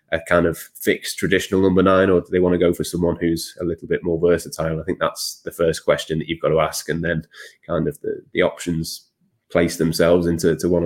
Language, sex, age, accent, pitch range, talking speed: English, male, 20-39, British, 80-85 Hz, 240 wpm